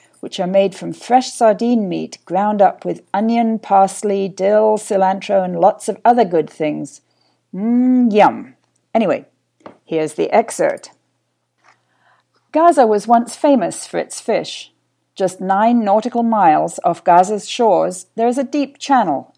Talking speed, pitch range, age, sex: 140 wpm, 195-240 Hz, 50-69, female